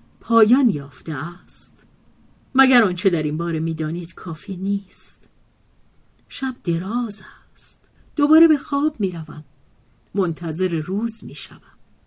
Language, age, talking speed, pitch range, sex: Persian, 50-69, 105 wpm, 170-220 Hz, female